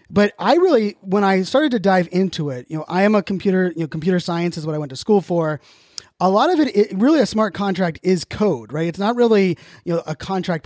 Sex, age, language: male, 30-49, English